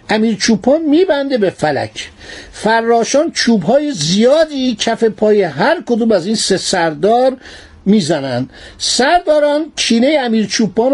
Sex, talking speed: male, 115 wpm